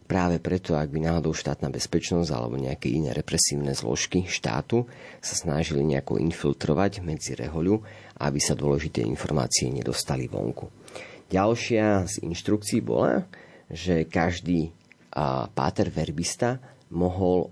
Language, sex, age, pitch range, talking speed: Slovak, male, 40-59, 80-95 Hz, 115 wpm